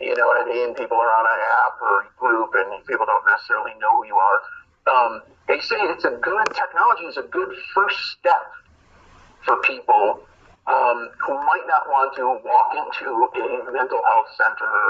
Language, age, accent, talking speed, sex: English, 40-59, American, 190 wpm, male